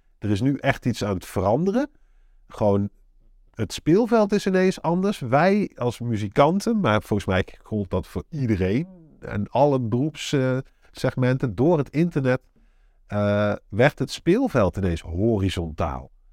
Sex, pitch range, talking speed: male, 100-140 Hz, 135 wpm